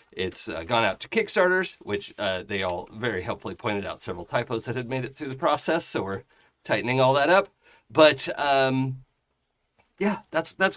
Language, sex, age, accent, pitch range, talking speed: English, male, 30-49, American, 115-175 Hz, 190 wpm